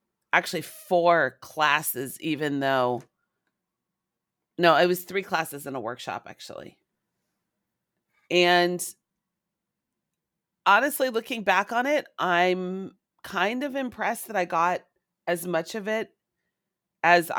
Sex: female